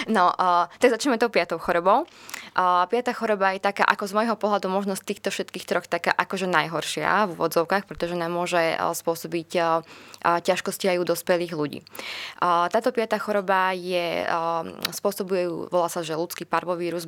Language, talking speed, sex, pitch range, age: Slovak, 150 wpm, female, 165-185 Hz, 20-39